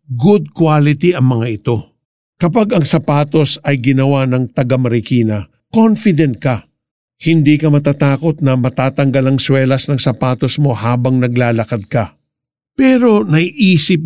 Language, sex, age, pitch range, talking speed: Filipino, male, 50-69, 125-160 Hz, 130 wpm